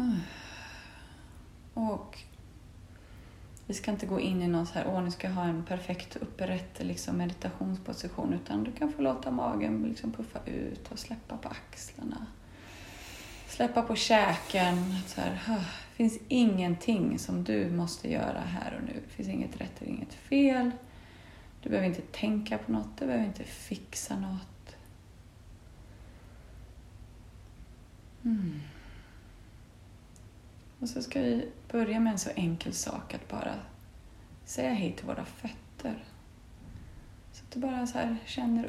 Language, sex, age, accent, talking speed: Swedish, female, 30-49, native, 140 wpm